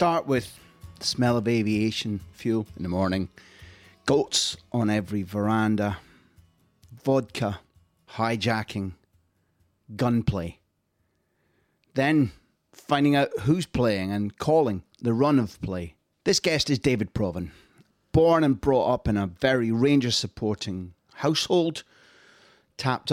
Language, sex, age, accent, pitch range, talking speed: English, male, 30-49, British, 100-125 Hz, 110 wpm